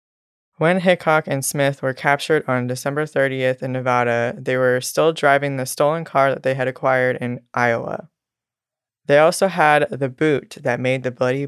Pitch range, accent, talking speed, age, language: 125-145 Hz, American, 175 wpm, 20-39, English